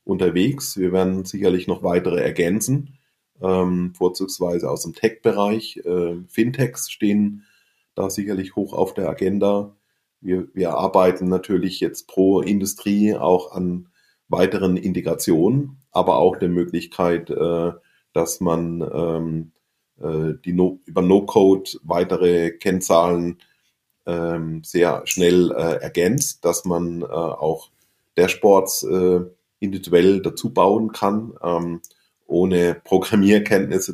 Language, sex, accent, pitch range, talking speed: German, male, German, 85-100 Hz, 115 wpm